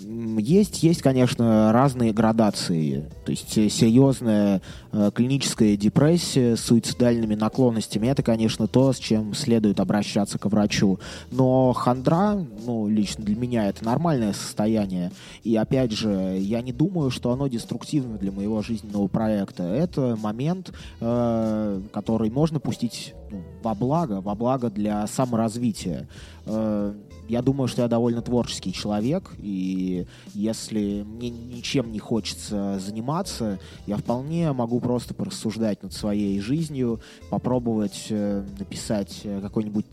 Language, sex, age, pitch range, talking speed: Russian, male, 20-39, 105-125 Hz, 125 wpm